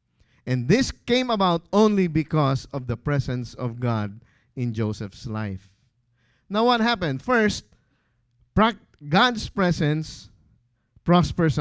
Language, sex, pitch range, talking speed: English, male, 120-190 Hz, 110 wpm